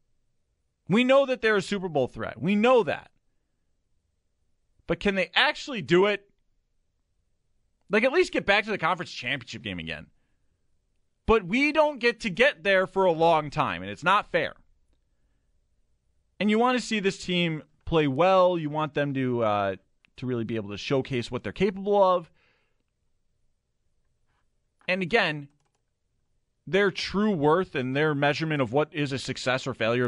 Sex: male